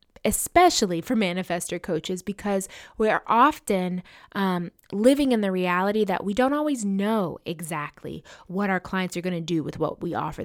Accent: American